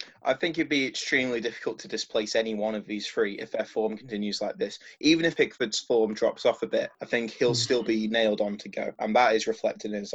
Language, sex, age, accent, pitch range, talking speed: English, male, 20-39, British, 110-135 Hz, 250 wpm